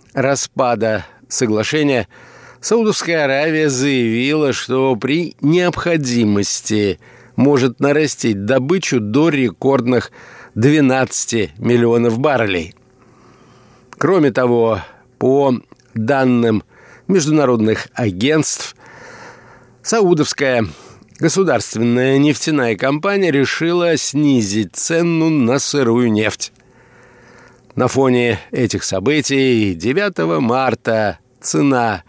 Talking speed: 75 wpm